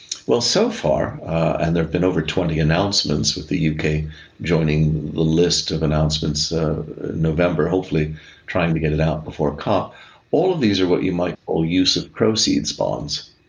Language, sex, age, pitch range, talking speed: English, male, 50-69, 75-90 Hz, 185 wpm